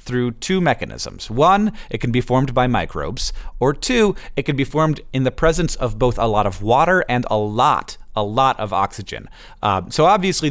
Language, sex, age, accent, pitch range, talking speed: English, male, 30-49, American, 110-140 Hz, 200 wpm